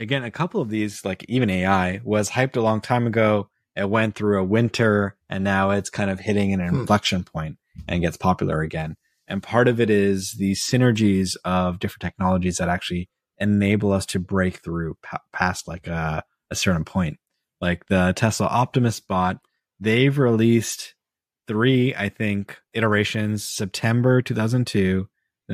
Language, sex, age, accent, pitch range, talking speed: English, male, 20-39, American, 90-110 Hz, 160 wpm